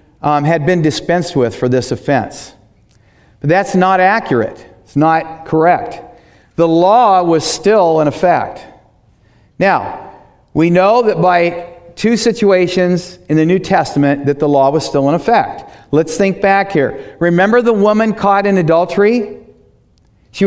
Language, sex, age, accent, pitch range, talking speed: English, male, 40-59, American, 155-195 Hz, 145 wpm